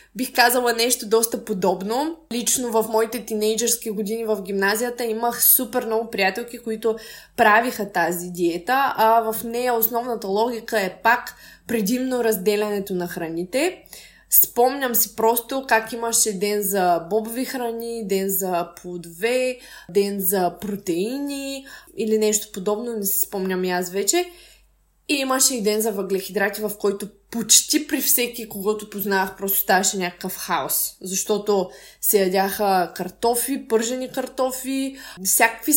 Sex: female